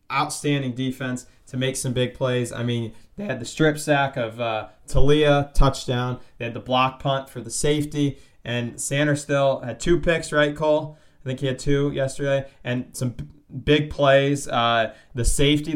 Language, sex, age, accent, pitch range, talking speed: English, male, 20-39, American, 120-145 Hz, 185 wpm